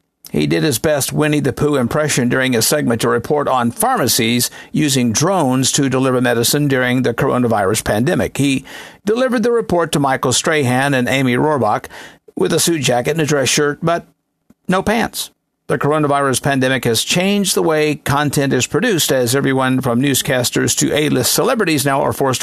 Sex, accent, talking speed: male, American, 175 wpm